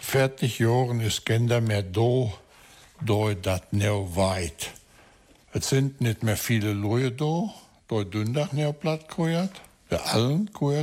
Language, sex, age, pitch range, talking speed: German, male, 60-79, 100-130 Hz, 95 wpm